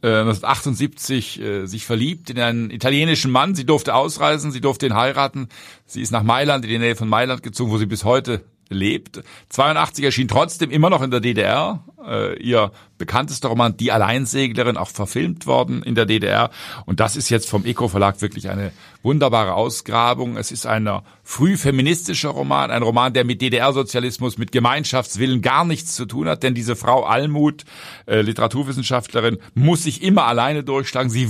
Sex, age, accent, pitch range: male, 50-69, German, 110-130 Hz